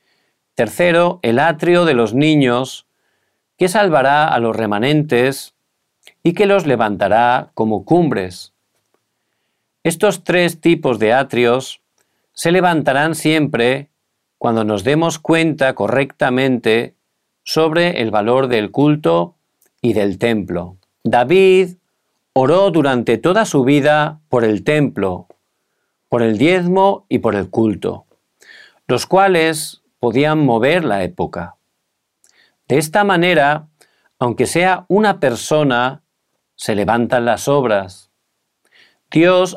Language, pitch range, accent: Korean, 115-165 Hz, Spanish